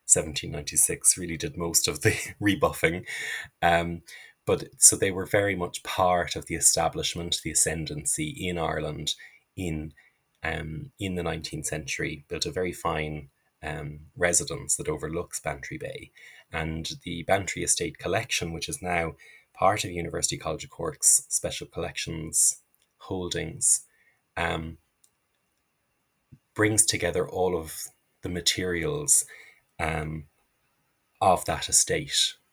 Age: 20-39